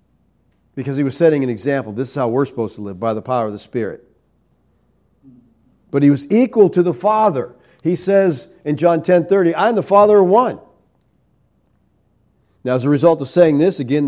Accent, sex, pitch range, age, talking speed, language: American, male, 135-195 Hz, 50-69, 190 wpm, English